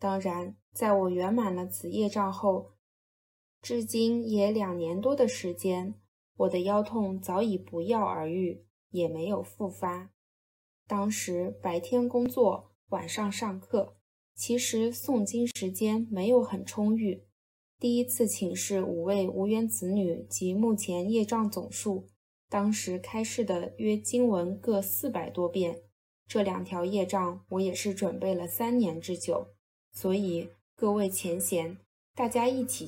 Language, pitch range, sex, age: Chinese, 175-220 Hz, female, 20-39